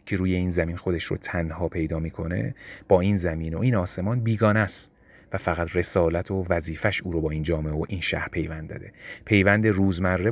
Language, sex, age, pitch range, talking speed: Persian, male, 30-49, 85-110 Hz, 200 wpm